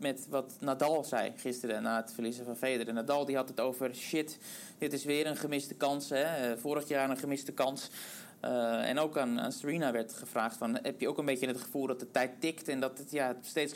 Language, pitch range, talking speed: Dutch, 130-155 Hz, 215 wpm